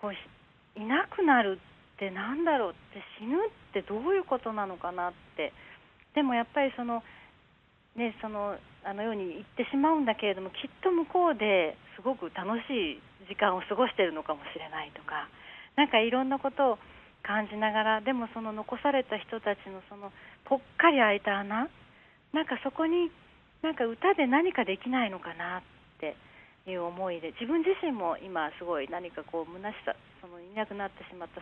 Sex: female